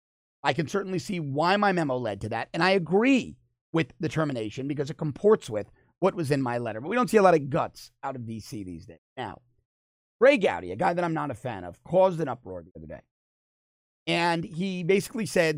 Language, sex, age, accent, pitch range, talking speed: English, male, 30-49, American, 115-175 Hz, 225 wpm